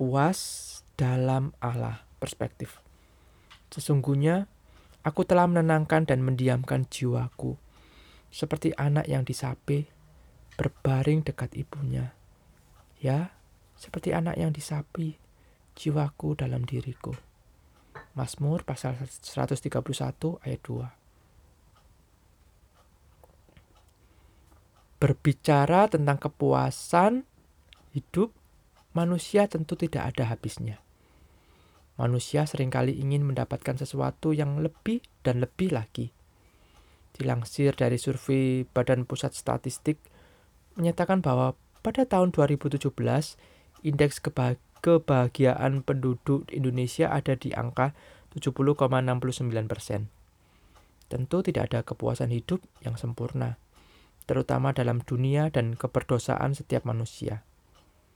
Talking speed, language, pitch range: 85 wpm, Indonesian, 105-150 Hz